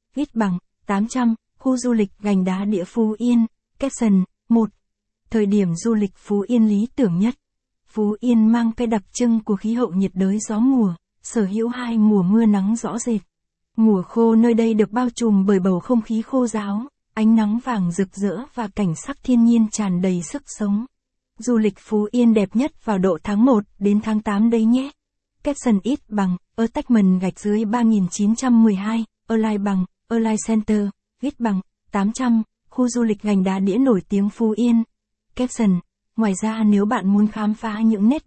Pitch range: 200-235 Hz